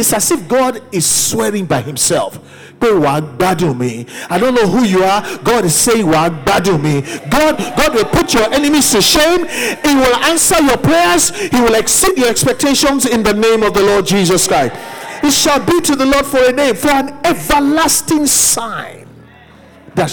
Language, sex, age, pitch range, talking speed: English, male, 50-69, 195-280 Hz, 190 wpm